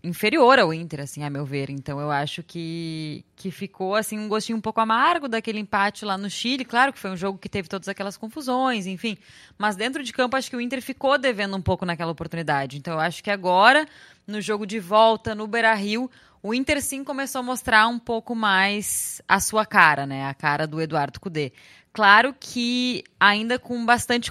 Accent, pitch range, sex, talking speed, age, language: Brazilian, 165-230 Hz, female, 205 wpm, 10-29, Portuguese